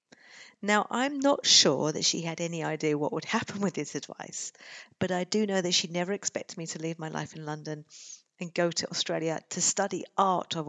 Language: English